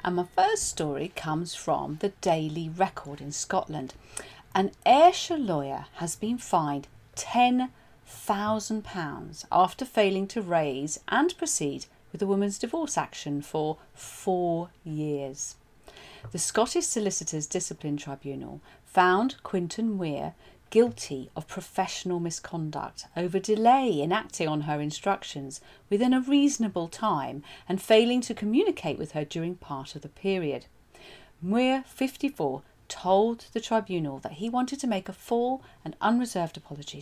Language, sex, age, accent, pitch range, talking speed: English, female, 40-59, British, 155-230 Hz, 135 wpm